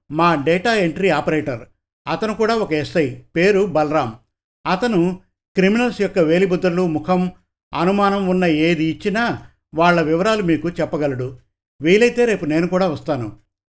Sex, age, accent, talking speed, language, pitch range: male, 50-69, native, 120 wpm, Telugu, 125-180 Hz